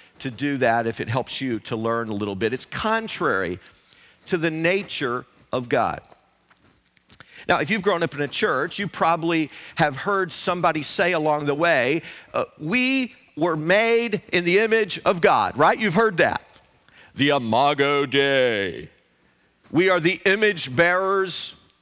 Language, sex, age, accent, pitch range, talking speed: English, male, 40-59, American, 145-210 Hz, 155 wpm